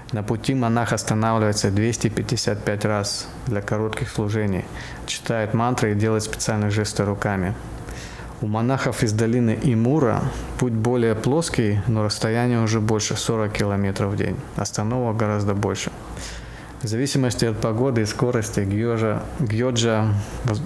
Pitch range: 105-125 Hz